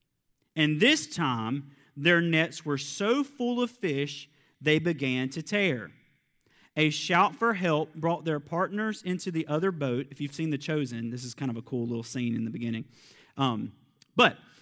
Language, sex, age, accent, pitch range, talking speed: English, male, 40-59, American, 145-205 Hz, 175 wpm